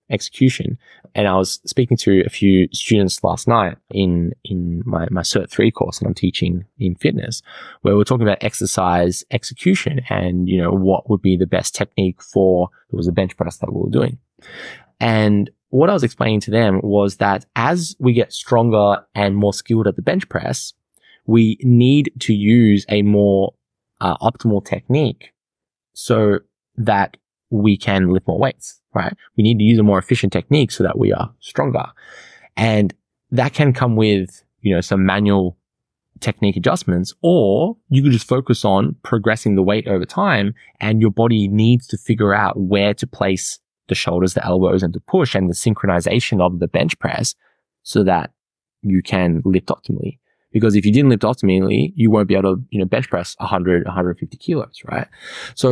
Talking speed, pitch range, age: 180 wpm, 95-120 Hz, 10-29